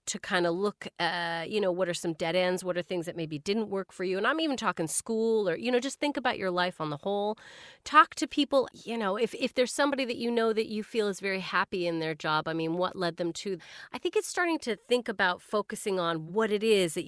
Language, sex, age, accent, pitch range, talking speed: English, female, 30-49, American, 165-235 Hz, 265 wpm